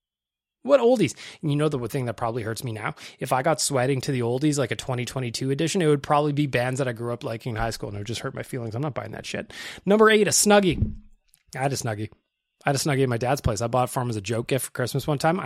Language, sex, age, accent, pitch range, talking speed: English, male, 20-39, American, 135-200 Hz, 300 wpm